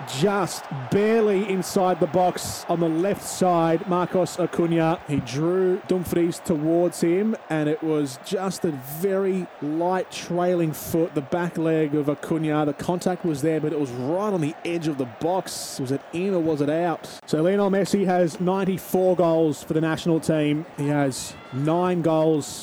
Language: English